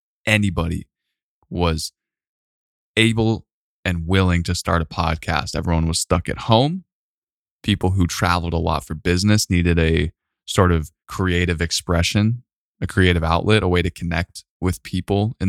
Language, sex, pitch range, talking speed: English, male, 80-95 Hz, 145 wpm